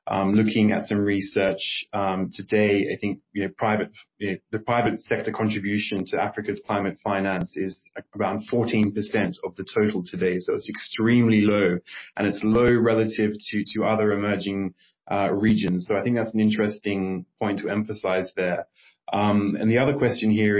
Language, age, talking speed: English, 20-39, 170 wpm